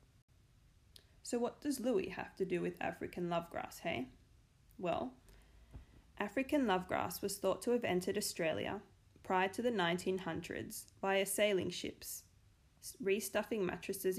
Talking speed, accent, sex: 125 wpm, Australian, female